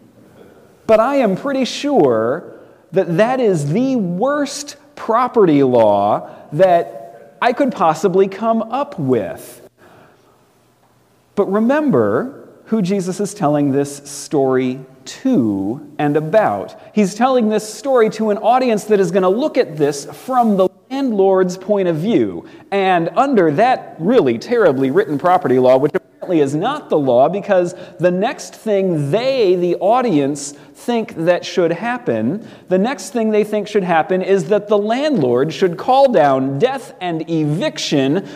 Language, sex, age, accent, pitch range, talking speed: English, male, 40-59, American, 150-225 Hz, 140 wpm